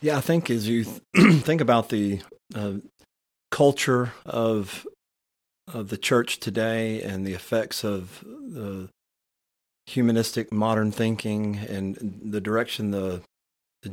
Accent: American